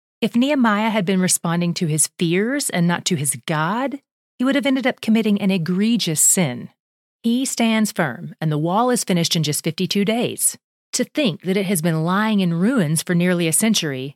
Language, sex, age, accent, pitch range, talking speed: English, female, 30-49, American, 165-220 Hz, 200 wpm